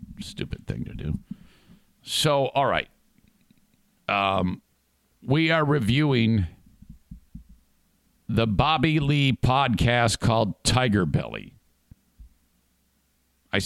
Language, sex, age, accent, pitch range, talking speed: English, male, 50-69, American, 75-115 Hz, 85 wpm